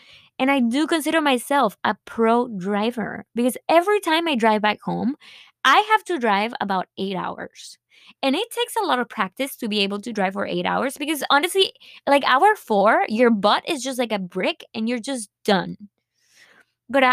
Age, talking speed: 20-39, 190 wpm